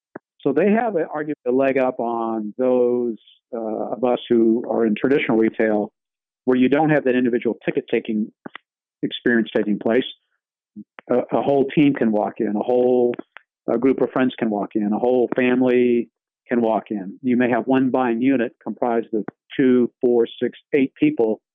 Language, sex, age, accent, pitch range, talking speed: English, male, 50-69, American, 115-125 Hz, 175 wpm